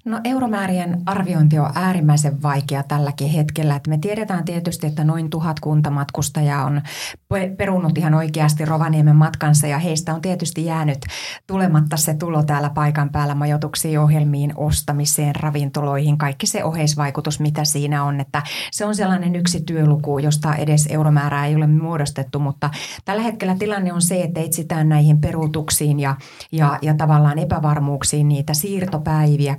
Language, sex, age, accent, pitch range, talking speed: Finnish, female, 30-49, native, 150-170 Hz, 145 wpm